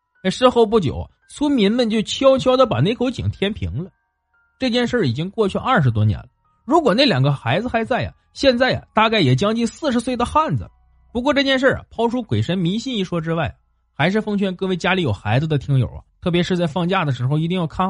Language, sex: Chinese, male